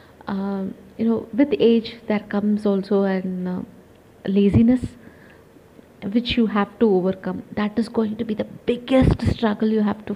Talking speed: 155 wpm